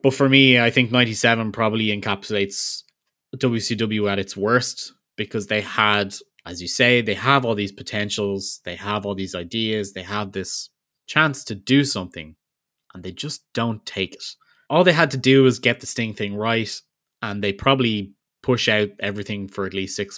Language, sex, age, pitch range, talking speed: English, male, 20-39, 100-120 Hz, 185 wpm